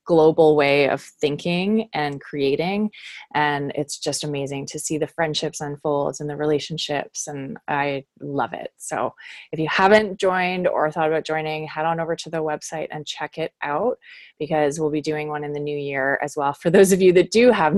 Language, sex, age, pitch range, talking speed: English, female, 20-39, 150-180 Hz, 200 wpm